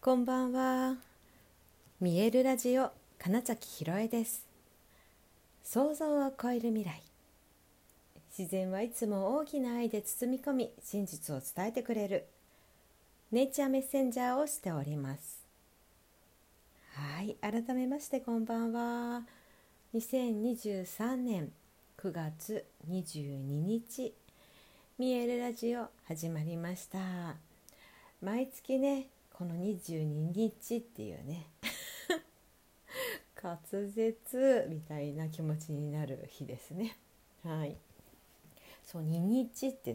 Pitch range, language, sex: 155-240 Hz, Japanese, female